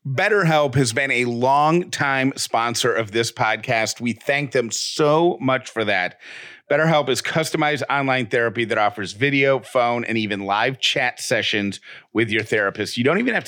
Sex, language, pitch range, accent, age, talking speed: male, English, 115-145 Hz, American, 40-59, 165 wpm